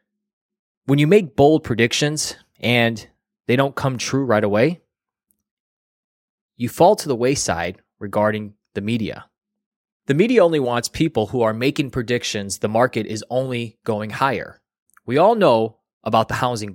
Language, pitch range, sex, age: English, 110-150 Hz, male, 20-39